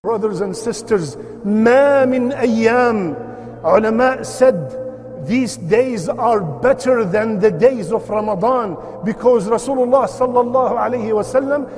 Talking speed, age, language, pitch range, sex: 110 wpm, 50-69, English, 205-250 Hz, male